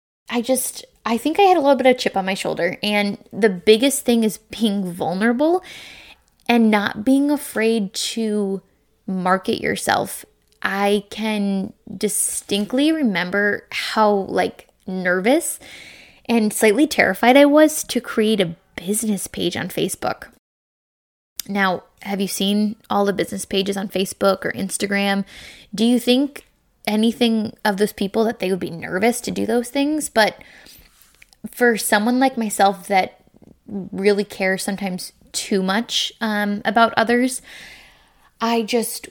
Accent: American